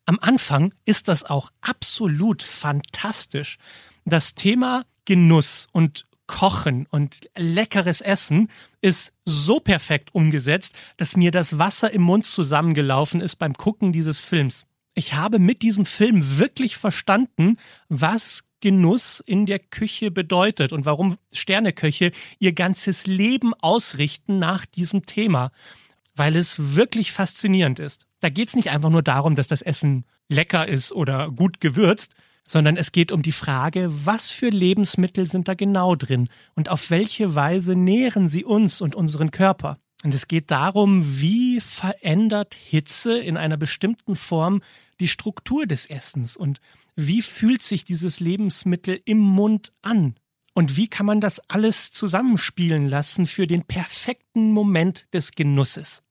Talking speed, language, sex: 145 wpm, German, male